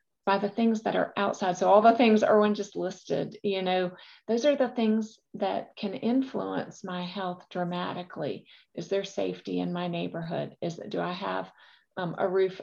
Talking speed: 185 wpm